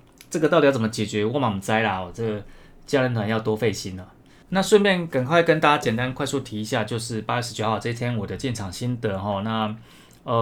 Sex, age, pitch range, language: male, 20-39, 110-140 Hz, Chinese